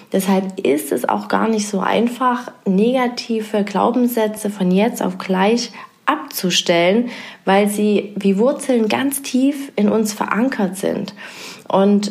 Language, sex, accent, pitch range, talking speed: German, female, German, 195-230 Hz, 130 wpm